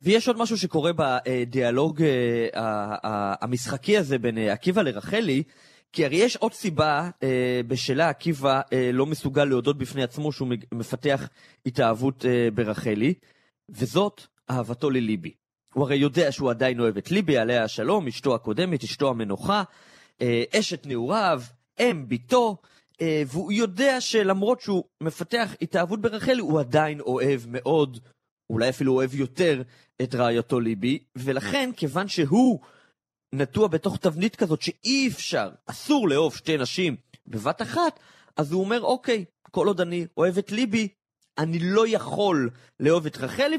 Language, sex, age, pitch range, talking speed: Hebrew, male, 30-49, 130-200 Hz, 125 wpm